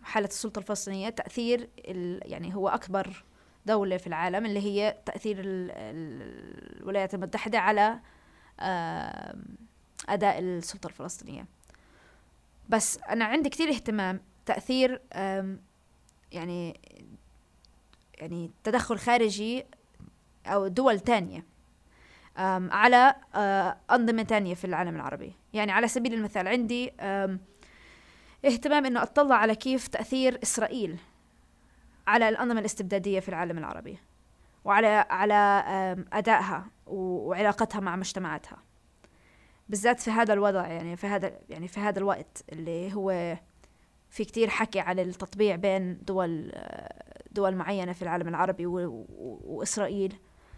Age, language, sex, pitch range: 20-39, Arabic, female, 185-225 Hz